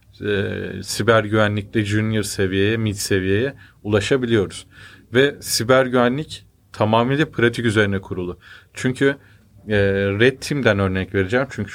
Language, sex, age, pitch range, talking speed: Turkish, male, 40-59, 100-120 Hz, 110 wpm